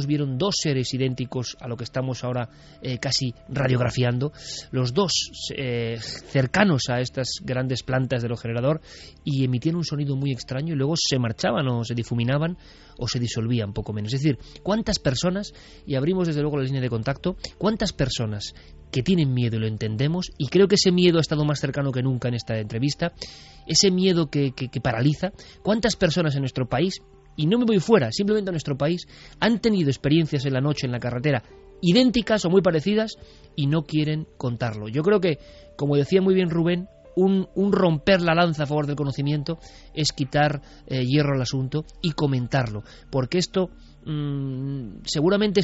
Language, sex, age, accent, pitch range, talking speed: Spanish, male, 20-39, Spanish, 130-170 Hz, 185 wpm